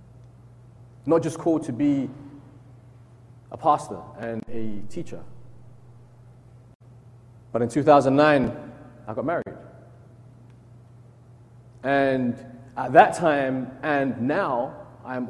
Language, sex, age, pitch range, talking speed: English, male, 30-49, 120-135 Hz, 90 wpm